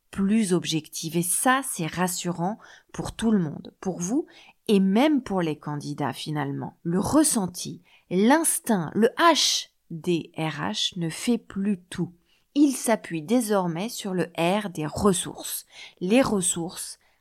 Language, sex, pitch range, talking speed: French, female, 165-225 Hz, 130 wpm